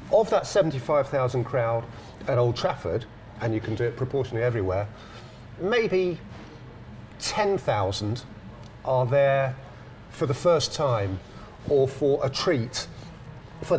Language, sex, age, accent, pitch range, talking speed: English, male, 40-59, British, 115-150 Hz, 120 wpm